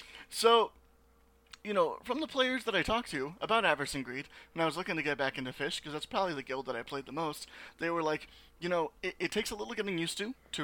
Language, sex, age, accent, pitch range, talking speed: English, male, 30-49, American, 145-195 Hz, 260 wpm